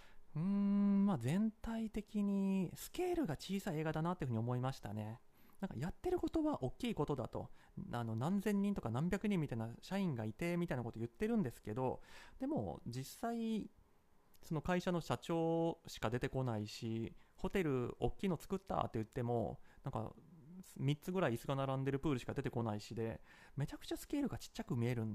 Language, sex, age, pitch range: Japanese, male, 30-49, 115-195 Hz